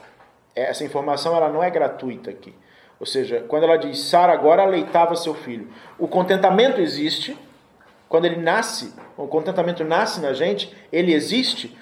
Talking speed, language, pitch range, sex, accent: 150 wpm, Portuguese, 155-200 Hz, male, Brazilian